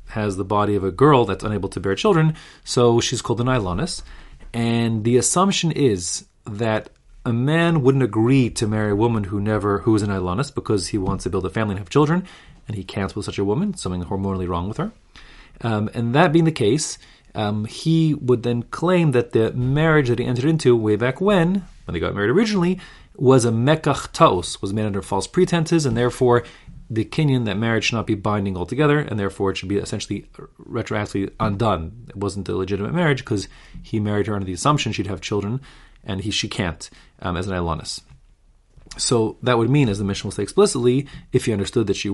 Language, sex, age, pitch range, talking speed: English, male, 30-49, 100-135 Hz, 210 wpm